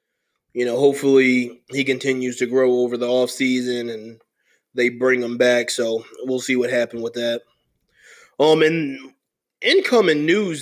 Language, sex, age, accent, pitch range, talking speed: English, male, 20-39, American, 125-150 Hz, 140 wpm